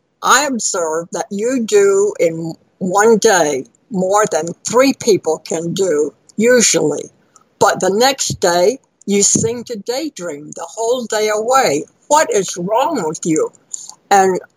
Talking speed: 135 wpm